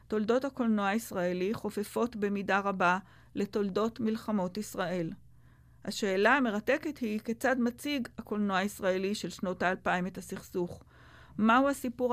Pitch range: 190-225 Hz